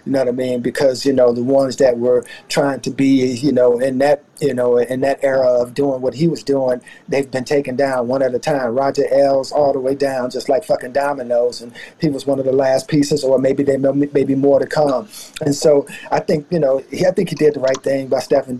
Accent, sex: American, male